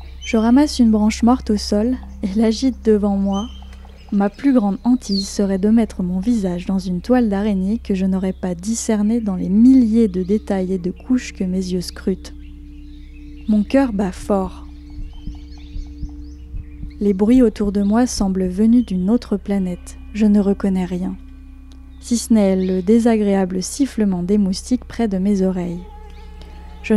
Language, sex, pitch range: French, female, 185-230 Hz